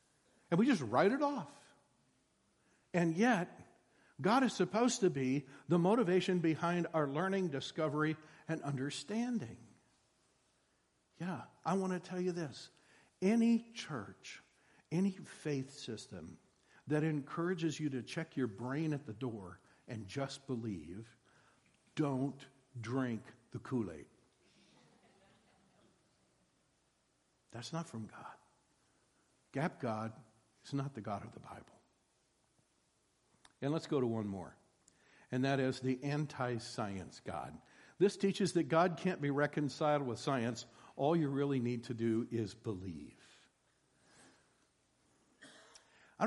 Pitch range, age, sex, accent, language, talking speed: 120-165 Hz, 60-79, male, American, English, 120 wpm